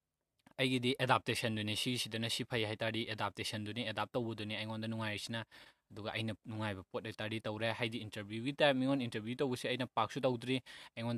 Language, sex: English, male